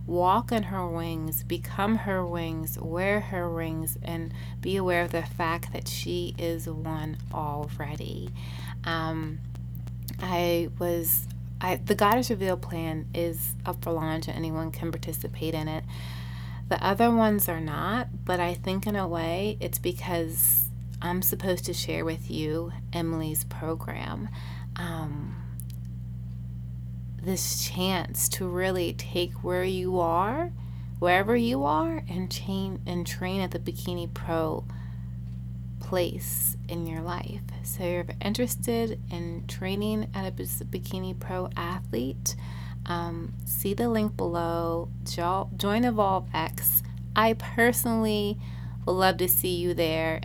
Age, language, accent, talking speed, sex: 30-49, English, American, 130 wpm, female